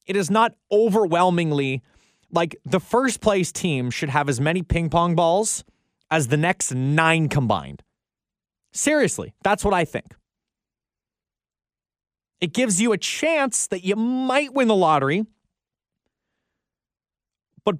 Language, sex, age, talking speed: English, male, 30-49, 130 wpm